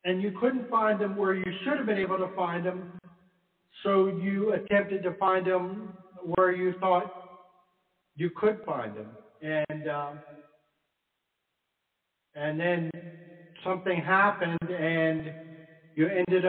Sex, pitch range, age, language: male, 160-185 Hz, 60-79, English